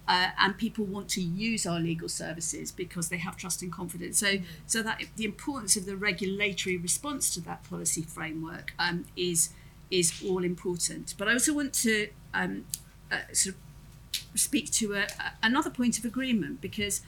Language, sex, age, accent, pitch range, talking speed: English, female, 40-59, British, 165-205 Hz, 180 wpm